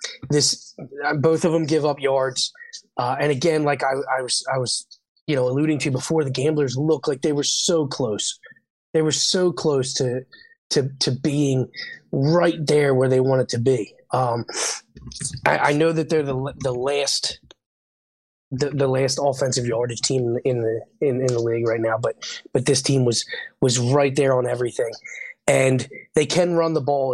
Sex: male